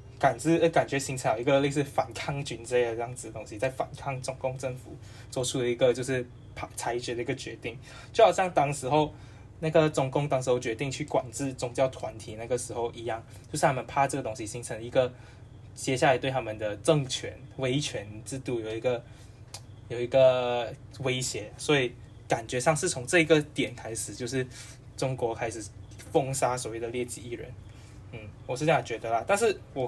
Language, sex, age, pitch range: Chinese, male, 10-29, 115-140 Hz